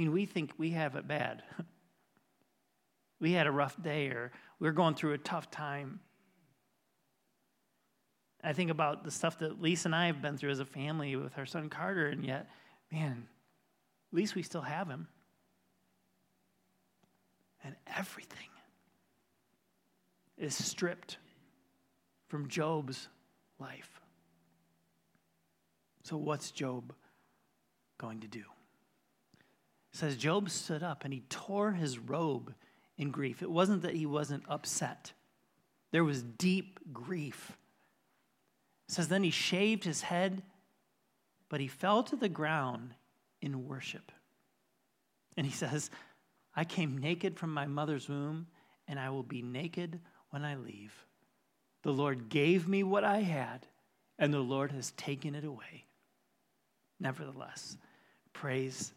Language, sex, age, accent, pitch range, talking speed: English, male, 40-59, American, 135-175 Hz, 130 wpm